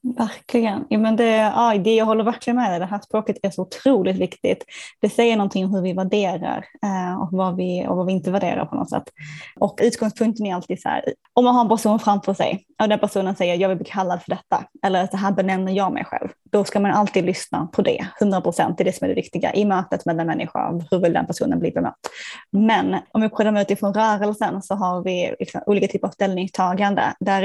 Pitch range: 185-220 Hz